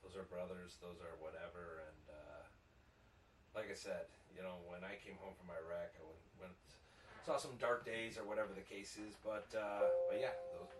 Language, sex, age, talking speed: English, male, 30-49, 200 wpm